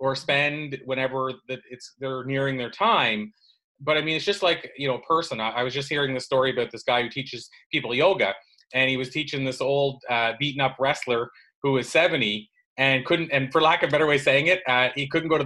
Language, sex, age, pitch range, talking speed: English, male, 30-49, 130-150 Hz, 235 wpm